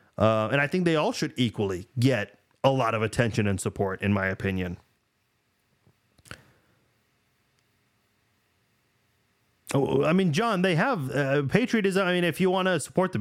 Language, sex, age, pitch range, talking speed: English, male, 30-49, 115-175 Hz, 155 wpm